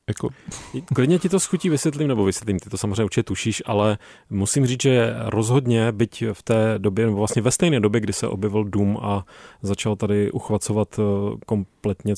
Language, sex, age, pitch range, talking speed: Czech, male, 30-49, 100-120 Hz, 175 wpm